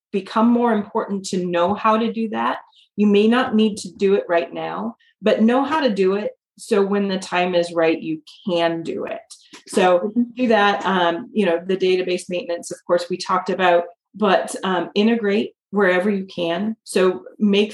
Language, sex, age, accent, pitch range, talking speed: English, female, 30-49, American, 170-220 Hz, 190 wpm